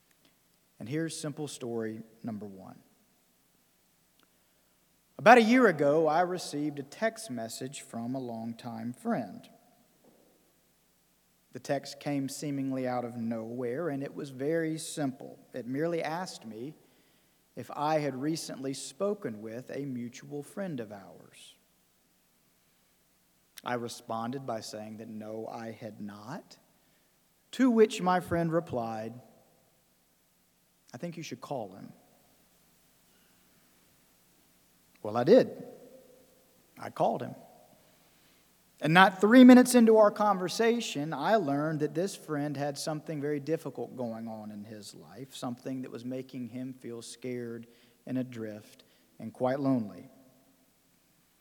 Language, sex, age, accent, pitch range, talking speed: English, male, 40-59, American, 115-165 Hz, 125 wpm